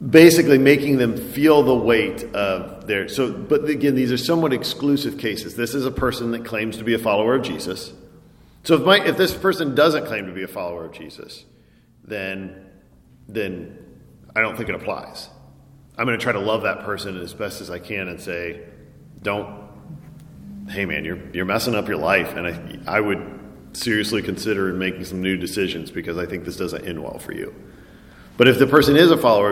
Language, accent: English, American